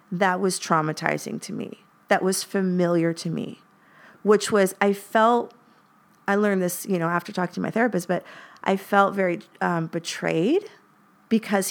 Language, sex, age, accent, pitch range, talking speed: English, female, 30-49, American, 180-220 Hz, 160 wpm